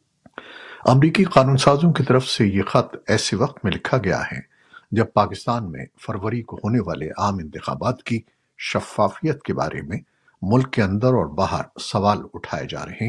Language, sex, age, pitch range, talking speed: Urdu, male, 50-69, 105-130 Hz, 170 wpm